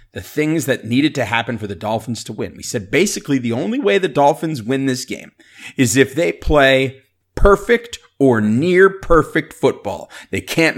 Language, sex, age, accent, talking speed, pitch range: English, male, 30-49, American, 180 wpm, 110-150 Hz